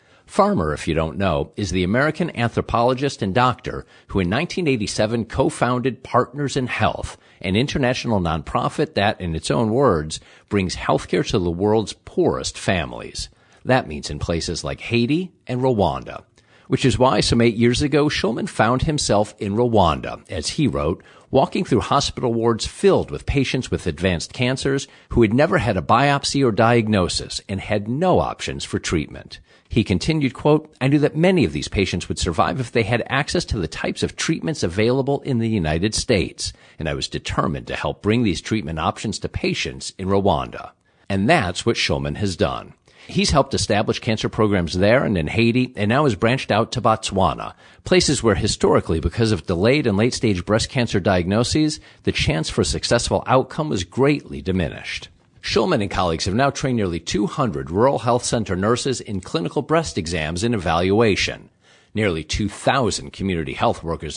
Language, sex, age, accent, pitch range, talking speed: English, male, 50-69, American, 95-130 Hz, 175 wpm